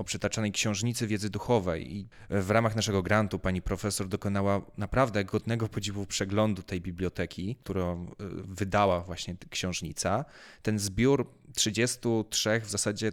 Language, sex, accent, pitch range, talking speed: Polish, male, native, 100-135 Hz, 125 wpm